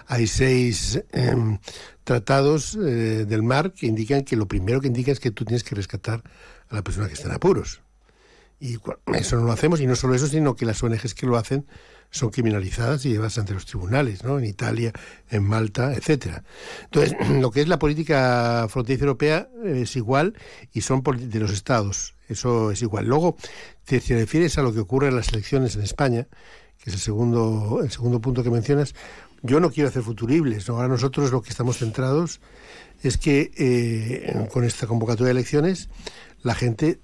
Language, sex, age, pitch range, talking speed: Spanish, male, 60-79, 110-140 Hz, 195 wpm